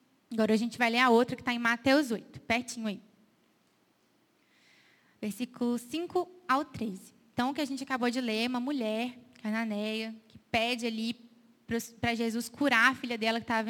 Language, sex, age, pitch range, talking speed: Portuguese, female, 20-39, 225-275 Hz, 180 wpm